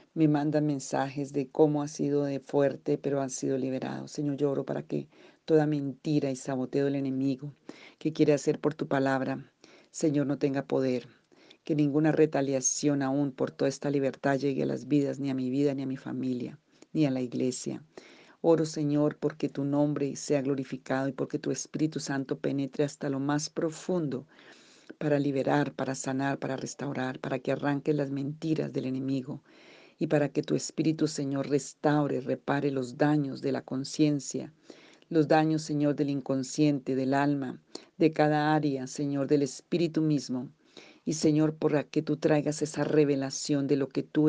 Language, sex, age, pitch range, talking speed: Spanish, female, 40-59, 135-150 Hz, 175 wpm